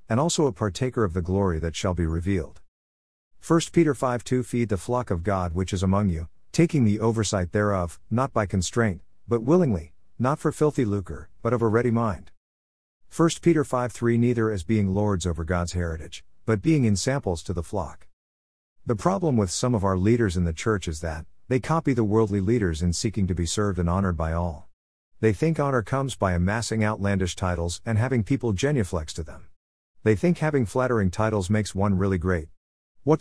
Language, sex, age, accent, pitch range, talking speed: English, male, 50-69, American, 85-120 Hz, 200 wpm